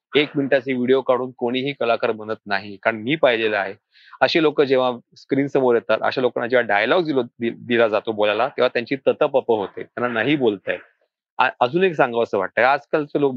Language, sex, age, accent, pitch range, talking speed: Marathi, male, 40-59, native, 120-160 Hz, 190 wpm